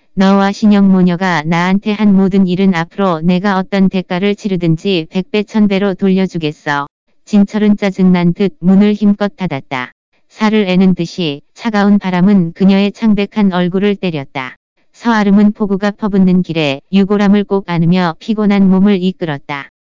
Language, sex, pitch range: Korean, female, 175-205 Hz